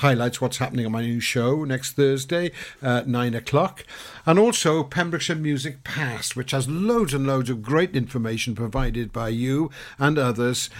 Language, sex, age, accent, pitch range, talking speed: English, male, 50-69, British, 120-145 Hz, 165 wpm